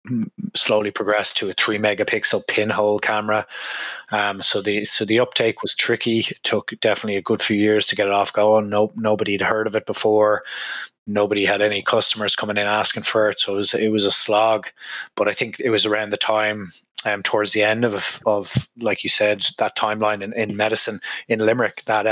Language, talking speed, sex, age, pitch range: English, 205 wpm, male, 20-39, 100-110 Hz